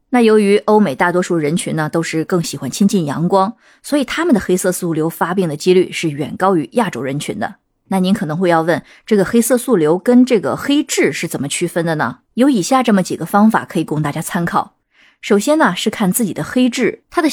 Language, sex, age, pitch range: Chinese, female, 20-39, 175-235 Hz